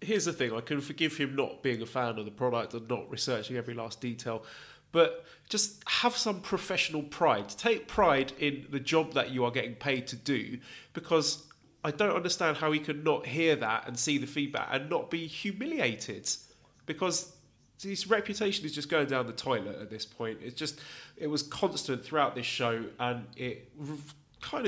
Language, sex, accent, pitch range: English, male, British, 120-150 Hz